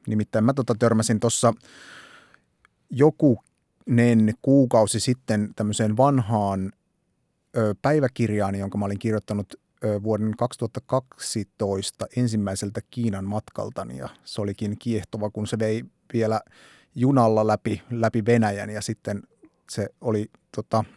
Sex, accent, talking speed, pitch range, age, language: male, native, 100 wpm, 105-125 Hz, 30-49, Finnish